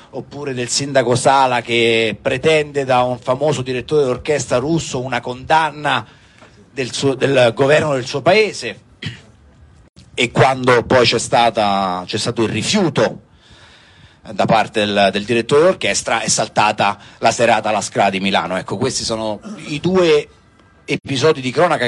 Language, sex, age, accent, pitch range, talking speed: Italian, male, 40-59, native, 115-140 Hz, 145 wpm